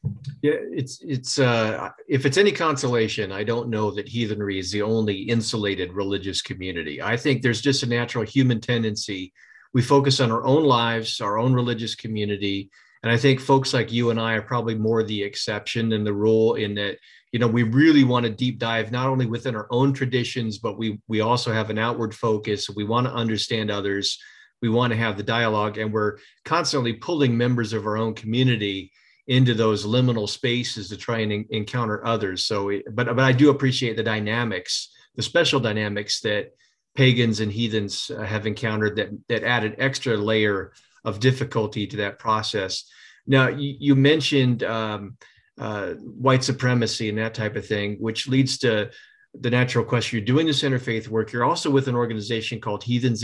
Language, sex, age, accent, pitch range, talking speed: English, male, 40-59, American, 110-130 Hz, 185 wpm